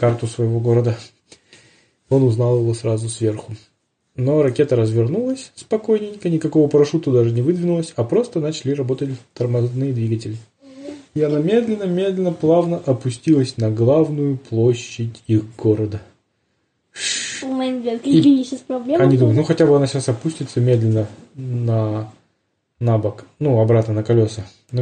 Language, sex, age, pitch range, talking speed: Russian, male, 20-39, 120-155 Hz, 120 wpm